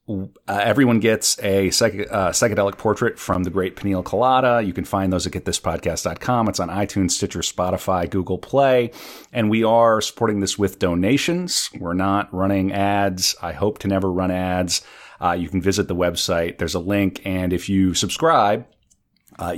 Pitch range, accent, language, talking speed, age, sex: 85-105 Hz, American, English, 175 wpm, 40-59, male